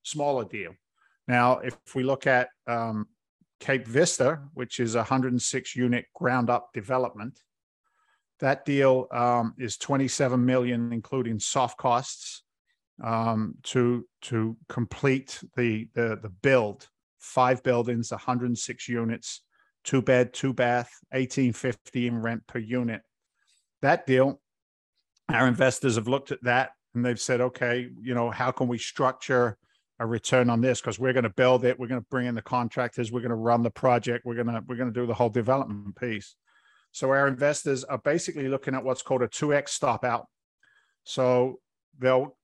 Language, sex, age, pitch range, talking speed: English, male, 50-69, 120-130 Hz, 160 wpm